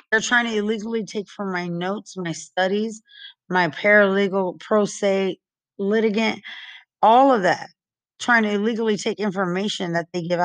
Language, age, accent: English, 30-49, American